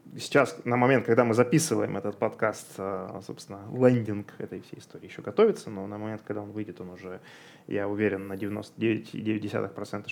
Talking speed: 160 wpm